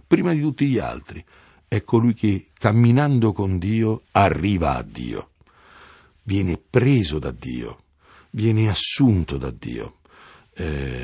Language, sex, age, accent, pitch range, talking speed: Italian, male, 50-69, native, 85-115 Hz, 125 wpm